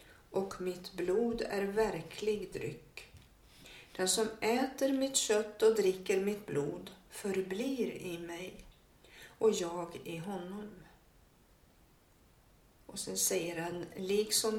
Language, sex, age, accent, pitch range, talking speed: Swedish, female, 60-79, native, 175-230 Hz, 110 wpm